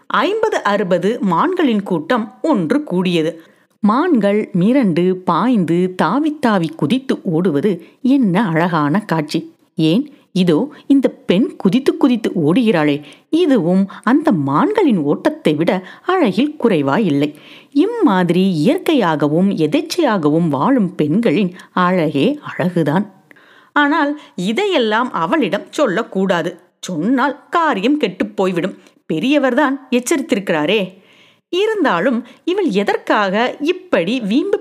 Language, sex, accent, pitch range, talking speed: Tamil, female, native, 190-295 Hz, 90 wpm